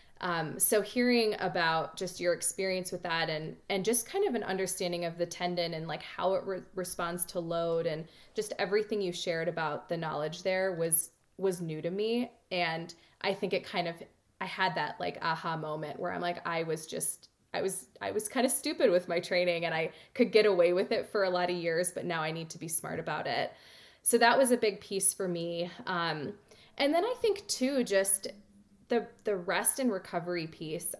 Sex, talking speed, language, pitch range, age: female, 215 wpm, English, 165-195 Hz, 20-39